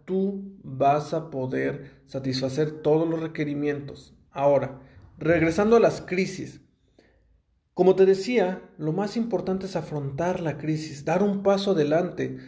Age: 40-59